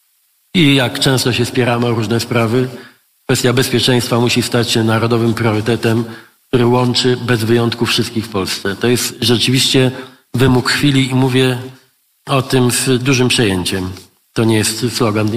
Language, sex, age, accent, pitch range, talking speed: Polish, male, 40-59, native, 115-130 Hz, 150 wpm